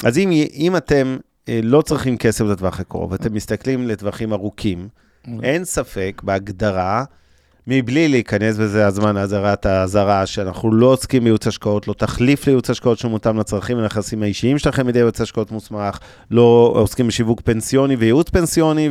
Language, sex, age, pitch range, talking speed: Hebrew, male, 30-49, 105-135 Hz, 150 wpm